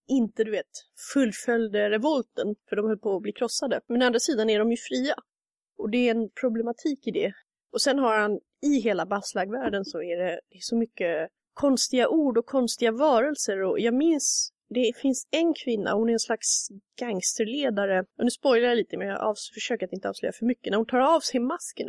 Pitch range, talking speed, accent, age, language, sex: 205-270 Hz, 210 wpm, native, 30-49, Swedish, female